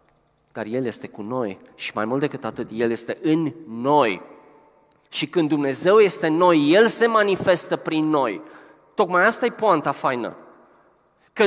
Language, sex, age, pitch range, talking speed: Romanian, male, 30-49, 155-205 Hz, 155 wpm